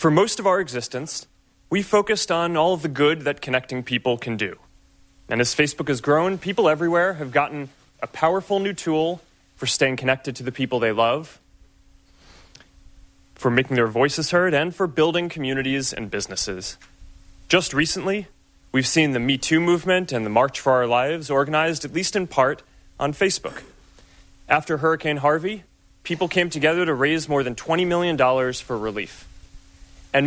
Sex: male